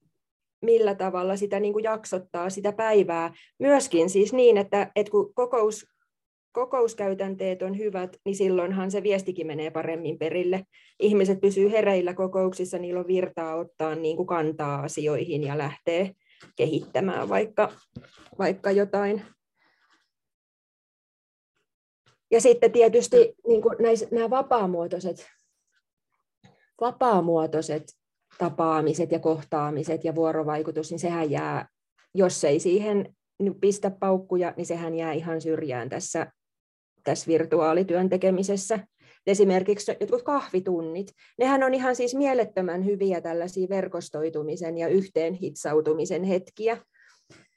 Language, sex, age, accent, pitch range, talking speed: Finnish, female, 20-39, native, 165-210 Hz, 110 wpm